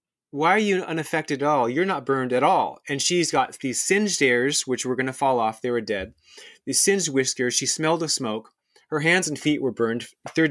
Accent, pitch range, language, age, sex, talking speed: American, 125-155 Hz, English, 30-49, male, 230 wpm